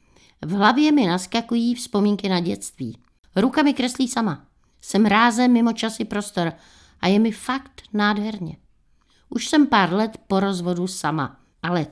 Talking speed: 145 wpm